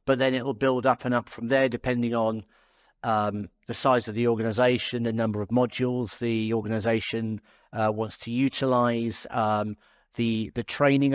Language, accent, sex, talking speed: English, British, male, 170 wpm